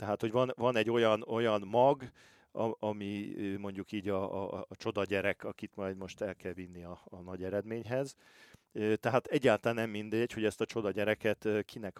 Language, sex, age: Hungarian, male, 40-59